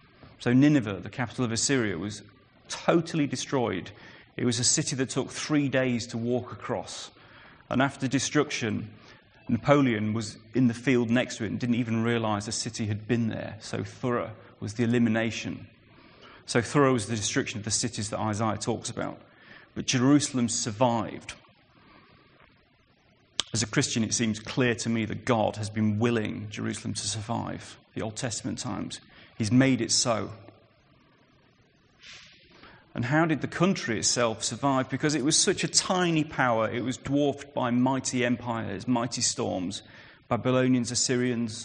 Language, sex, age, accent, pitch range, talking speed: English, male, 30-49, British, 115-130 Hz, 155 wpm